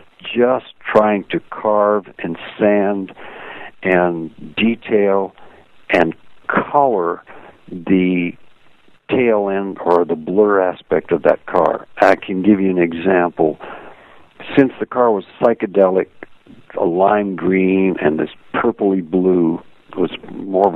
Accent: American